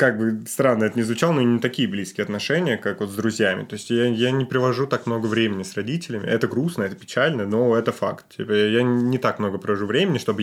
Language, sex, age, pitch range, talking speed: Russian, male, 20-39, 105-135 Hz, 230 wpm